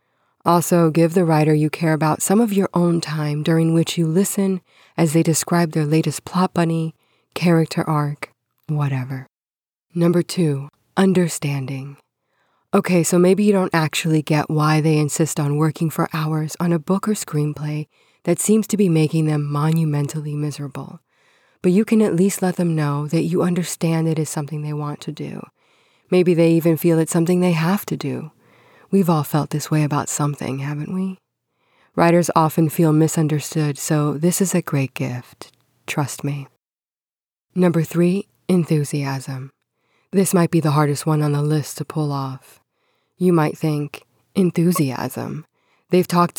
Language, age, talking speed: English, 20-39, 165 wpm